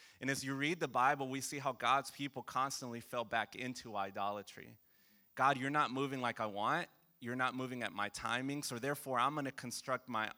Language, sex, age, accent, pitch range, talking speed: English, male, 30-49, American, 115-140 Hz, 210 wpm